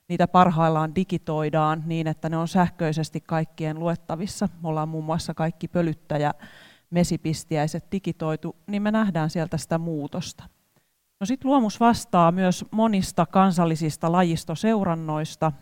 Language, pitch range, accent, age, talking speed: Finnish, 160-190 Hz, native, 30-49, 125 wpm